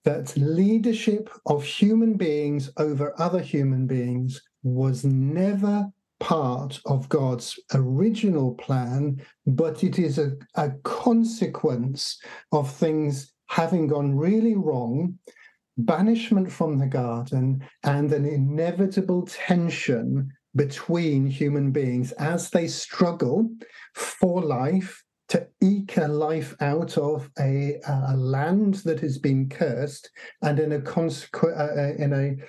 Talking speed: 115 wpm